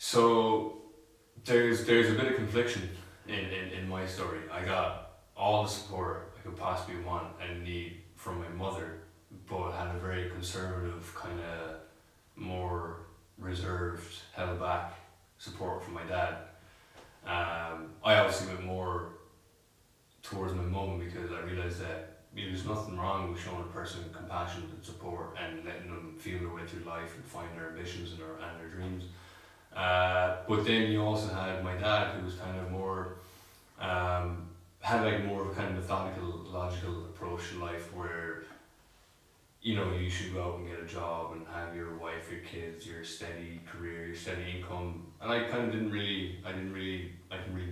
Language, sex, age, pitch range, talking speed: English, male, 20-39, 85-95 Hz, 170 wpm